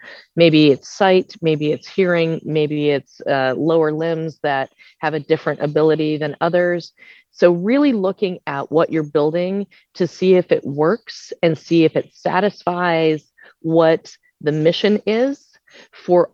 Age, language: 30-49, English